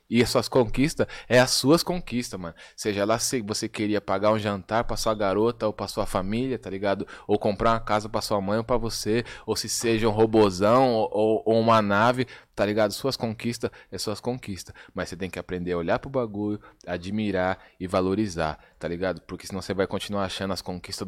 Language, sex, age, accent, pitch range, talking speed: Portuguese, male, 20-39, Brazilian, 100-125 Hz, 215 wpm